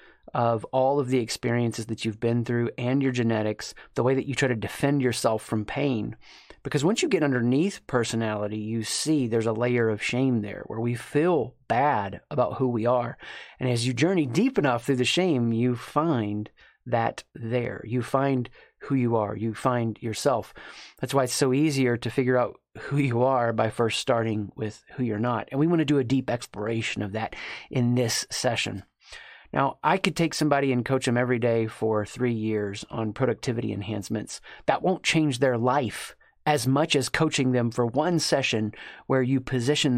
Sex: male